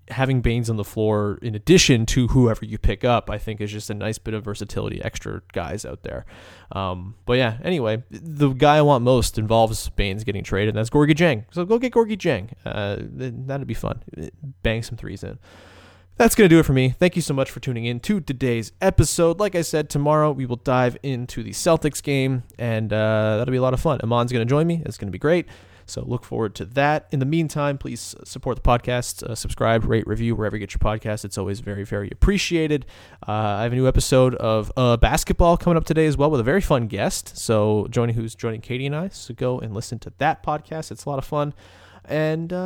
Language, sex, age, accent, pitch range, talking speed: English, male, 20-39, American, 110-160 Hz, 230 wpm